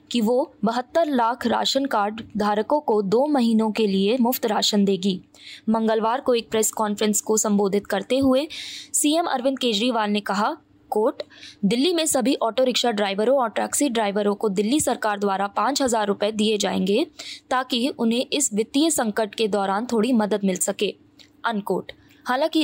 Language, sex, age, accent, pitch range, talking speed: Hindi, female, 20-39, native, 215-265 Hz, 160 wpm